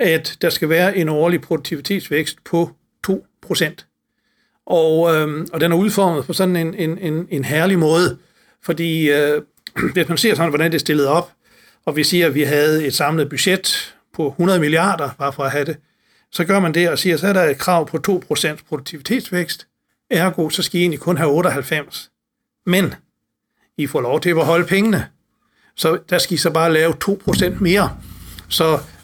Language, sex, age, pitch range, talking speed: Danish, male, 60-79, 150-185 Hz, 190 wpm